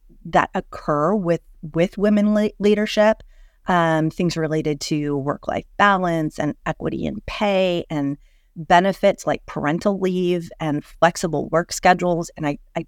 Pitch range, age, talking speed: 155-185 Hz, 30-49, 135 wpm